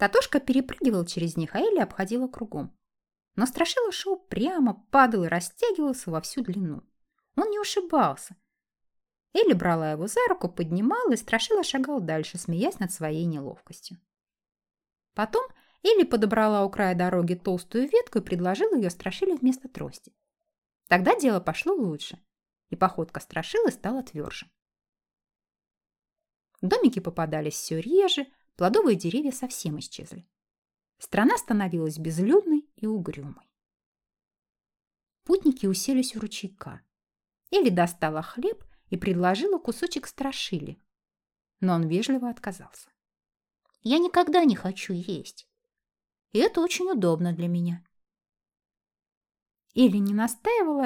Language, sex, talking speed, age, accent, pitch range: Russian, female, 120 wpm, 20-39, native, 180-295 Hz